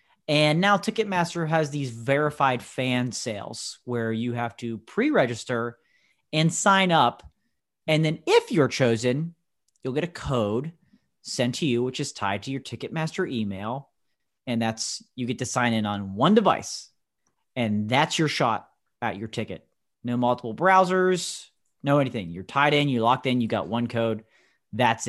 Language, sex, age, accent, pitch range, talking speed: English, male, 30-49, American, 110-150 Hz, 165 wpm